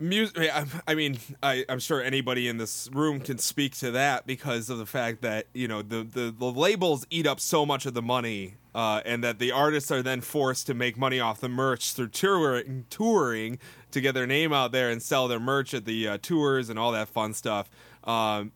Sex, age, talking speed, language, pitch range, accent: male, 20-39, 220 wpm, English, 120-150 Hz, American